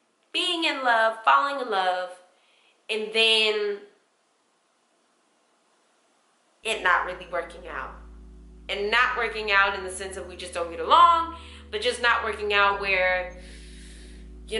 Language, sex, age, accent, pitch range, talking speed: English, female, 20-39, American, 180-290 Hz, 135 wpm